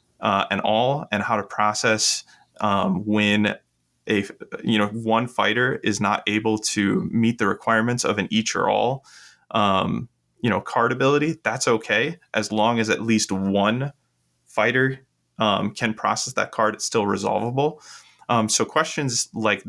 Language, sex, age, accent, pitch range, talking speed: English, male, 20-39, American, 100-115 Hz, 160 wpm